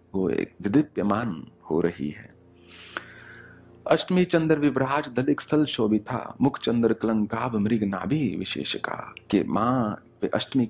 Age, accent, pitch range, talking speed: 40-59, Indian, 100-125 Hz, 110 wpm